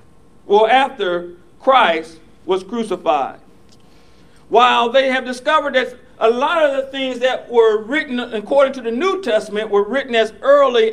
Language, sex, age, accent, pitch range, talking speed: English, male, 50-69, American, 215-310 Hz, 150 wpm